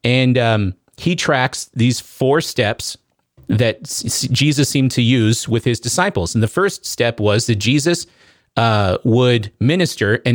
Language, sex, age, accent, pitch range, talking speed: English, male, 40-59, American, 115-140 Hz, 150 wpm